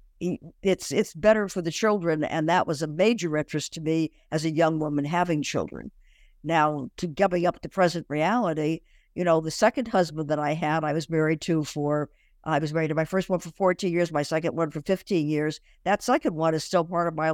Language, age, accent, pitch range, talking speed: English, 60-79, American, 155-180 Hz, 220 wpm